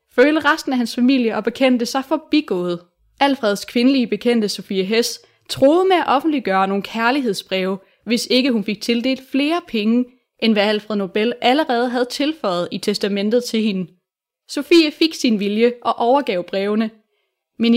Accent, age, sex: native, 20-39, female